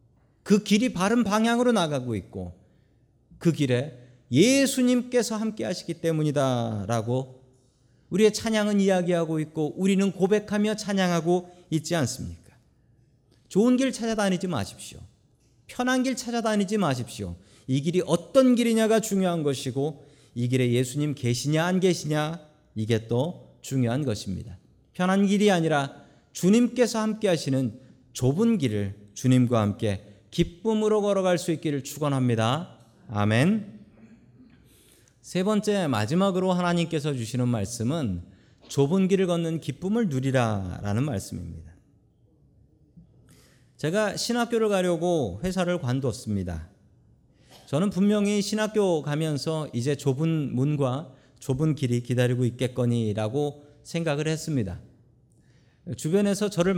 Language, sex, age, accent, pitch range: Korean, male, 40-59, native, 125-190 Hz